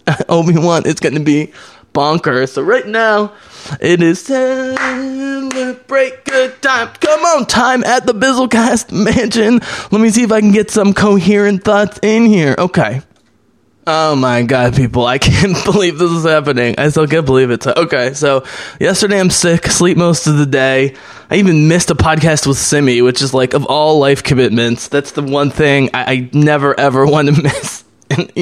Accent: American